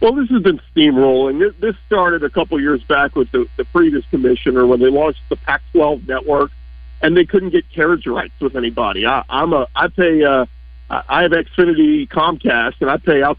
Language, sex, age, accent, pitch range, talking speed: English, male, 50-69, American, 135-205 Hz, 200 wpm